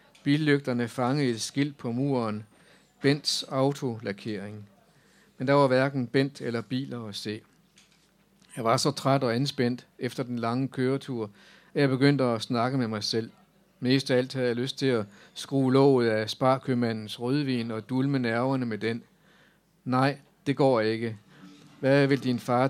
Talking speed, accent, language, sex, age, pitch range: 160 wpm, native, Danish, male, 50-69, 120-140 Hz